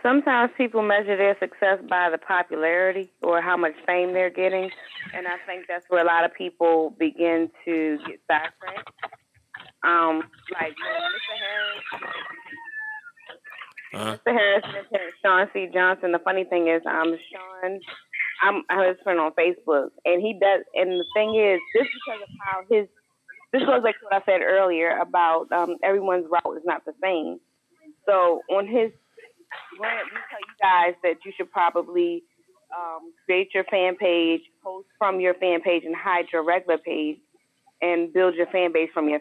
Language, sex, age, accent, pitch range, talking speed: English, female, 20-39, American, 175-210 Hz, 175 wpm